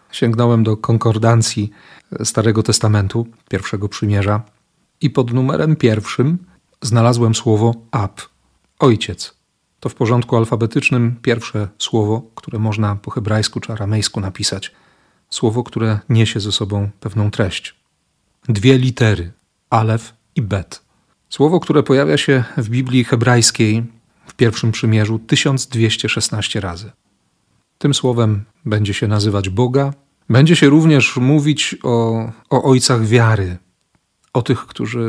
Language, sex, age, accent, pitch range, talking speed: Polish, male, 40-59, native, 110-125 Hz, 120 wpm